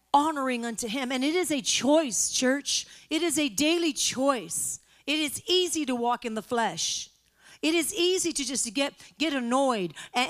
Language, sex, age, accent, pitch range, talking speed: English, female, 40-59, American, 260-345 Hz, 185 wpm